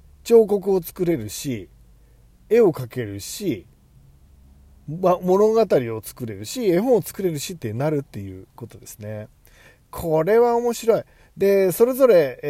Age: 40-59